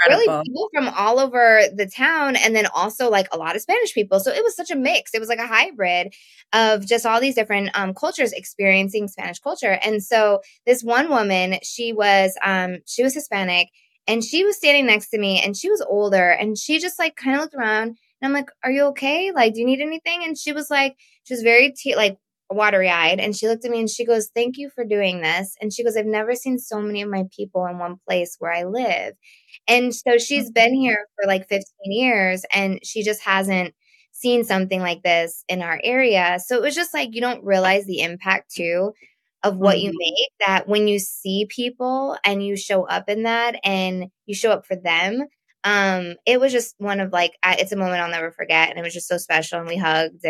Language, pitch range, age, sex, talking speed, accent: English, 190-245 Hz, 20-39, female, 230 wpm, American